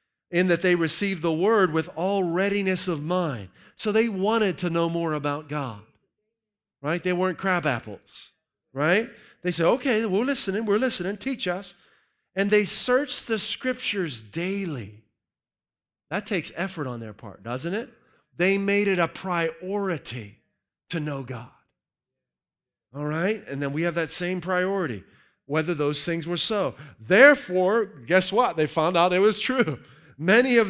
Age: 40-59